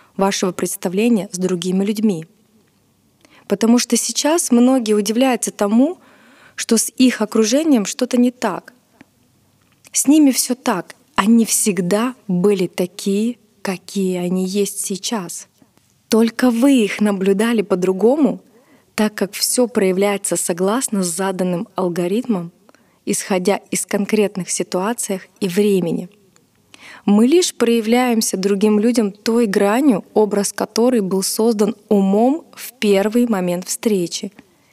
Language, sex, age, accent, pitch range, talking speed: Russian, female, 20-39, native, 195-235 Hz, 110 wpm